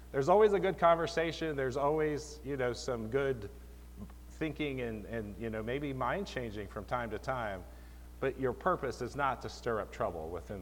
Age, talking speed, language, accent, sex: 40-59, 185 wpm, English, American, male